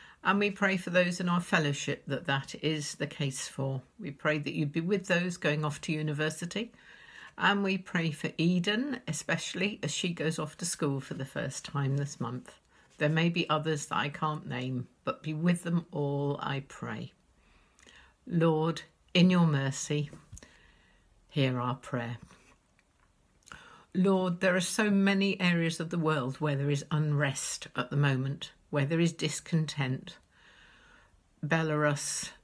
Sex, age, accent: female, 50-69, British